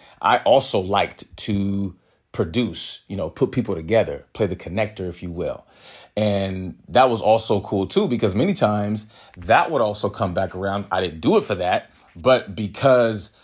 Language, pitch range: English, 105-145 Hz